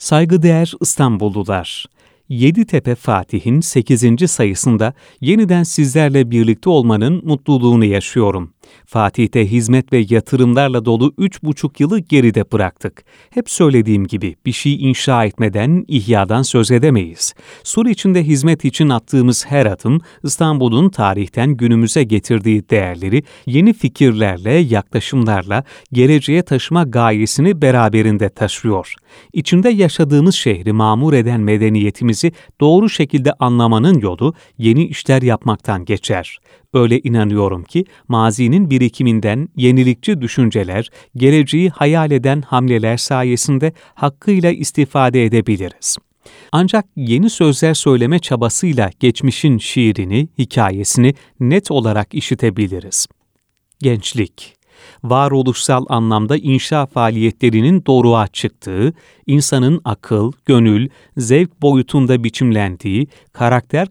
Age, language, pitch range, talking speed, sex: 40-59, Turkish, 110-150 Hz, 100 wpm, male